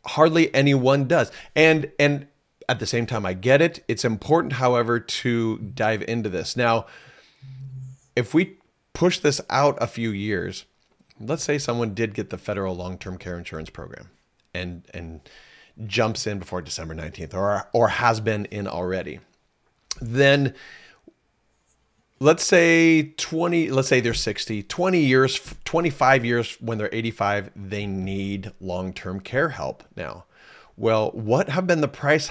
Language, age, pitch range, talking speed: English, 40-59, 105-145 Hz, 145 wpm